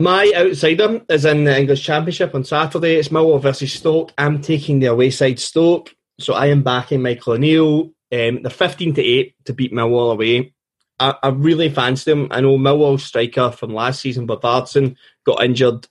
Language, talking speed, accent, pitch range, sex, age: English, 175 wpm, British, 120-145 Hz, male, 20-39